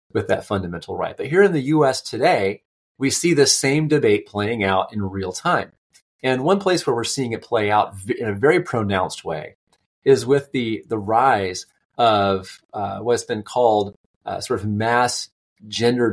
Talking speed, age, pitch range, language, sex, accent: 190 wpm, 30-49, 100-130 Hz, English, male, American